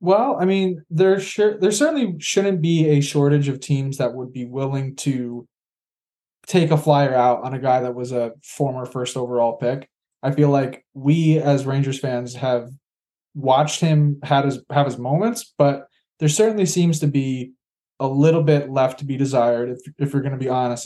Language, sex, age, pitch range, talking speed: English, male, 20-39, 130-150 Hz, 195 wpm